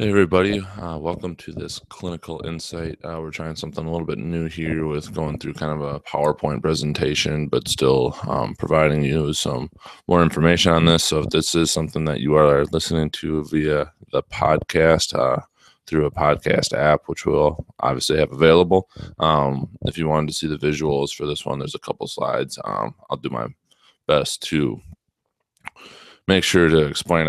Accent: American